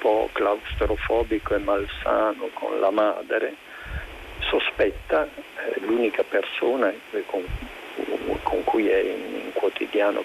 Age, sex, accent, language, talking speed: 50-69, male, native, Italian, 110 wpm